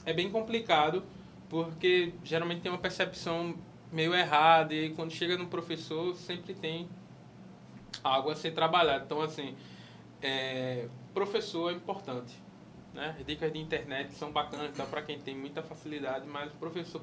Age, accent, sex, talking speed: 20-39, Brazilian, male, 135 wpm